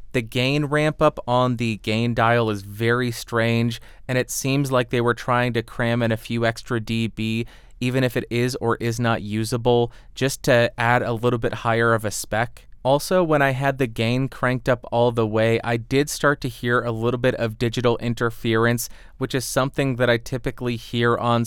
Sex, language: male, English